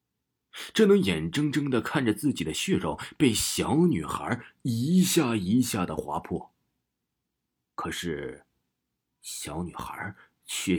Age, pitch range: 30-49, 75-115 Hz